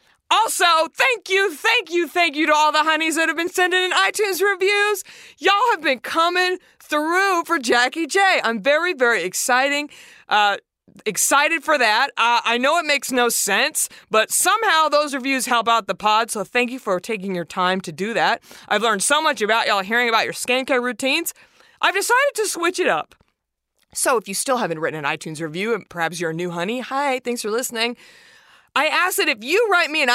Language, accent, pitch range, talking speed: English, American, 215-340 Hz, 205 wpm